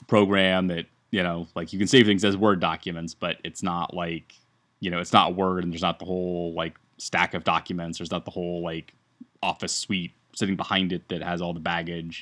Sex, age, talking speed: male, 20-39, 220 wpm